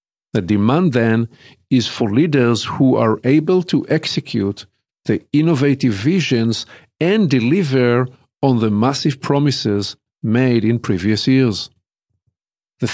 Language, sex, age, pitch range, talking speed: English, male, 50-69, 115-145 Hz, 115 wpm